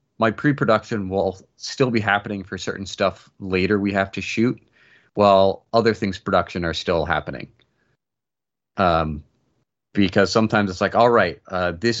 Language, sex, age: English, male, 30-49